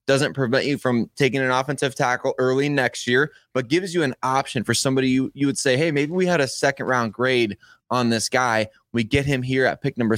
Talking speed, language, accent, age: 230 wpm, English, American, 20-39